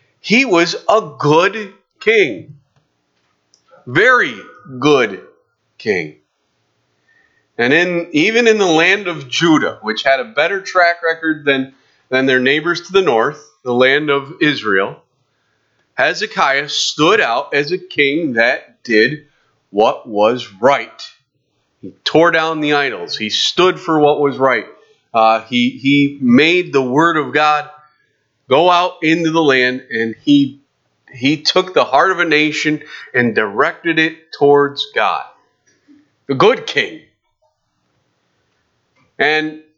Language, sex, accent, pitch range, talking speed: English, male, American, 135-185 Hz, 130 wpm